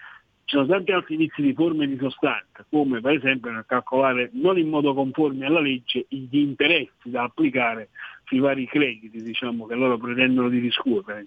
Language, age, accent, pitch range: Italian, 60-79, native, 130-180 Hz